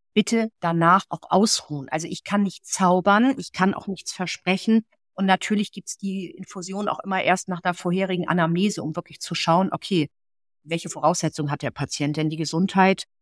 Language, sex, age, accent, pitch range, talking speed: German, female, 50-69, German, 170-205 Hz, 180 wpm